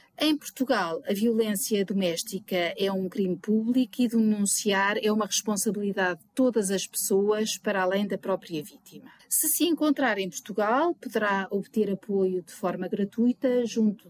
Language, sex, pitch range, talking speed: Portuguese, female, 190-230 Hz, 150 wpm